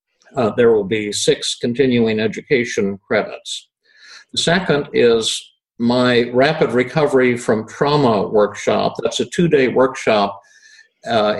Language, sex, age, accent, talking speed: English, male, 50-69, American, 115 wpm